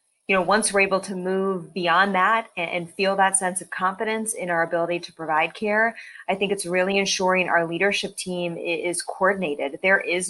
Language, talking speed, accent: English, 190 wpm, American